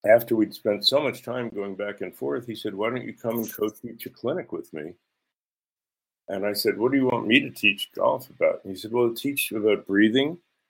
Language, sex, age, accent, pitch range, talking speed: English, male, 50-69, American, 95-120 Hz, 235 wpm